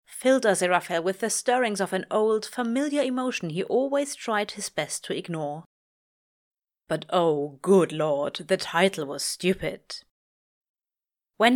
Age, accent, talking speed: 30-49, German, 140 wpm